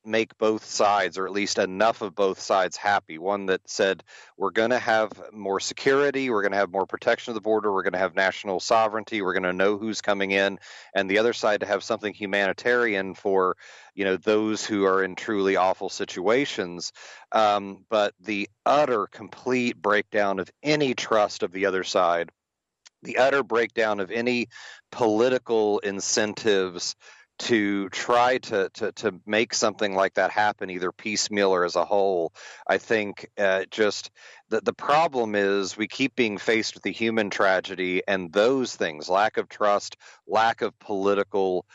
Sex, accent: male, American